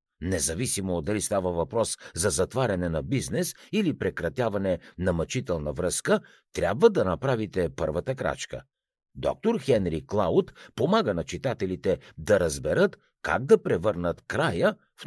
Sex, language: male, Bulgarian